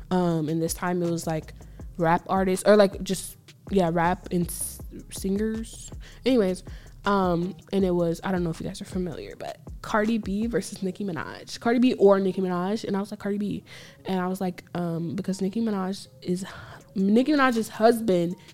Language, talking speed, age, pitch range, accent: English, 190 wpm, 20-39, 175-230 Hz, American